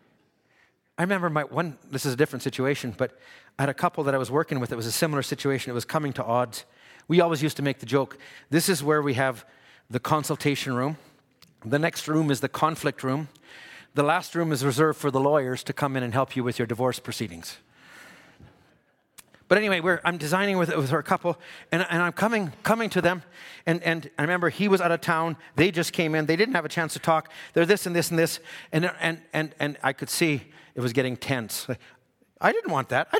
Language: English